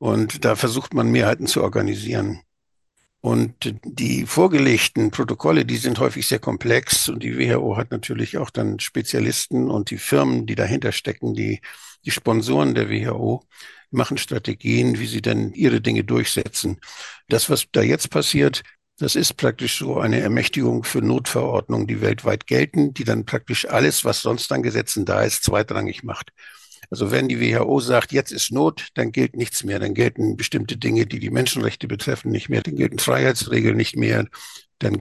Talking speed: 170 wpm